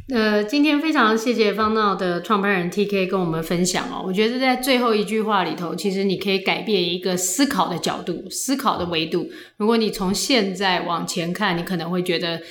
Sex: female